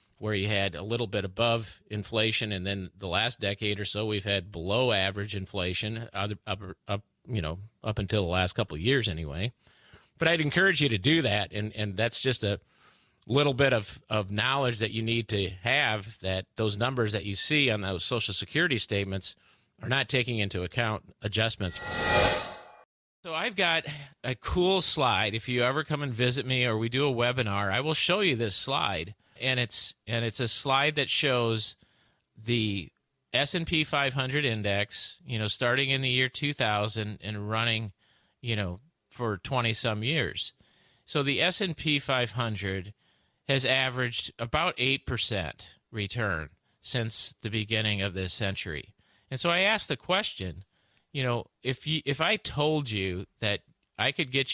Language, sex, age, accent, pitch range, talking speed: English, male, 40-59, American, 100-135 Hz, 170 wpm